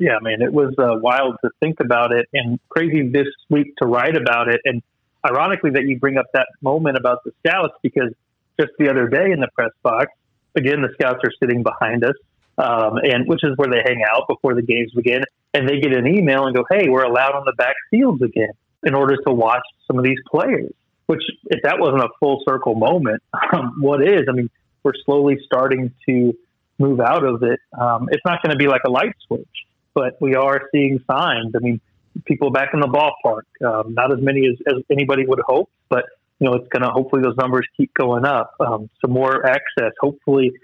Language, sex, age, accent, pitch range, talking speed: English, male, 30-49, American, 125-140 Hz, 220 wpm